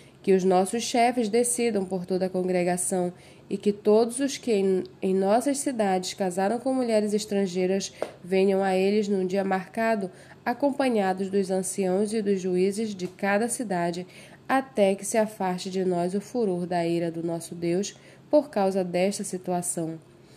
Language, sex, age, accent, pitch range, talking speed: Portuguese, female, 20-39, Brazilian, 185-220 Hz, 155 wpm